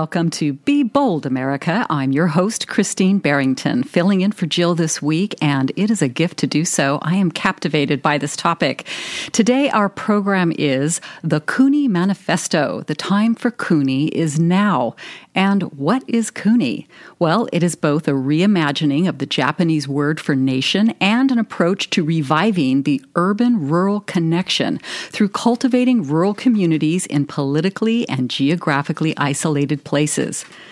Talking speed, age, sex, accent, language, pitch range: 155 wpm, 40-59, female, American, English, 150-205 Hz